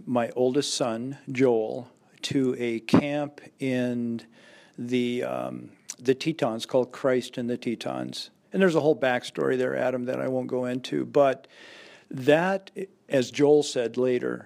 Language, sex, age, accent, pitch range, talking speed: English, male, 50-69, American, 125-140 Hz, 145 wpm